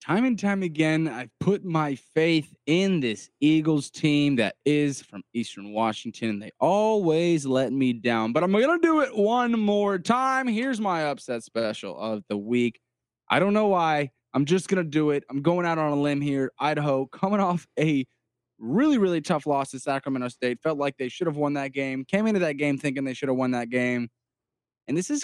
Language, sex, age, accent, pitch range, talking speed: English, male, 20-39, American, 125-175 Hz, 210 wpm